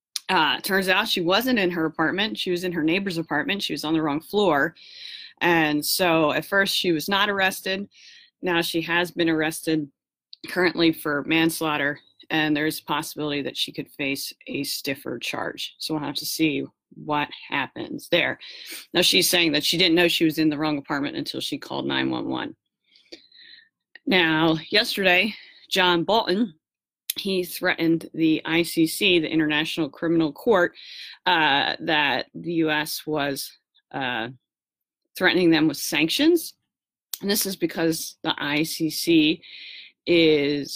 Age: 30-49